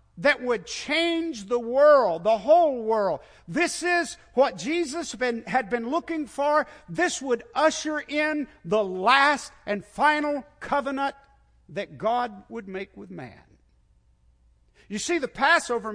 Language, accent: English, American